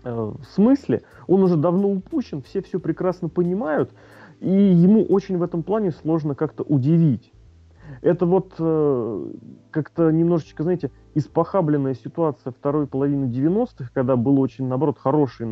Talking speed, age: 130 wpm, 30-49